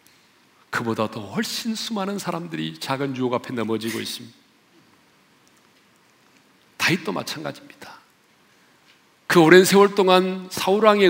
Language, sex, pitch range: Korean, male, 140-215 Hz